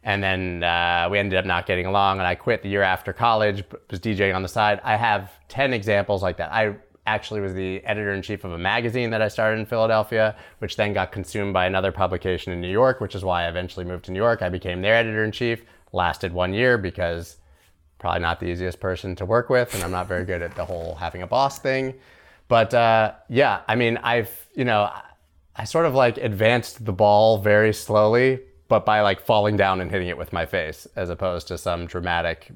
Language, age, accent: English, 30-49, American